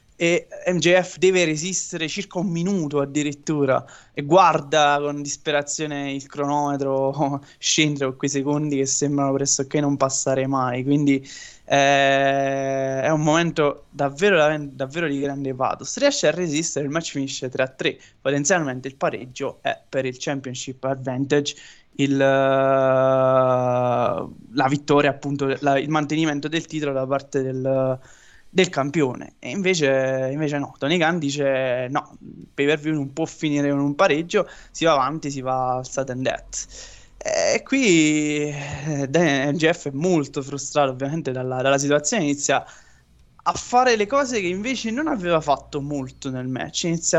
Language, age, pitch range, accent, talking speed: Italian, 20-39, 135-160 Hz, native, 150 wpm